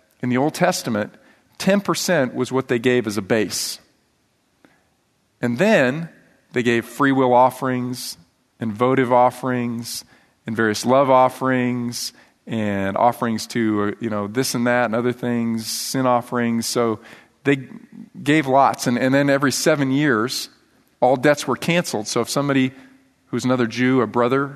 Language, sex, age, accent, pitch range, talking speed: English, male, 40-59, American, 120-130 Hz, 150 wpm